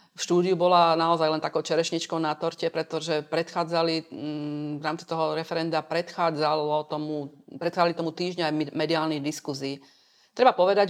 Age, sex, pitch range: 40-59, female, 155-175 Hz